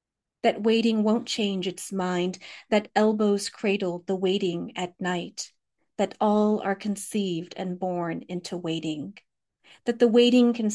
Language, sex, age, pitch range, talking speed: English, female, 40-59, 185-215 Hz, 140 wpm